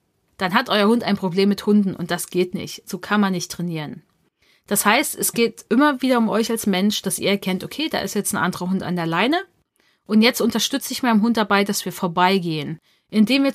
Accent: German